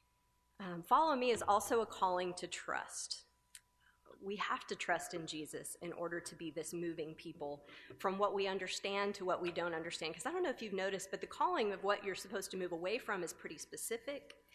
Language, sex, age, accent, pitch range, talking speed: English, female, 30-49, American, 170-220 Hz, 215 wpm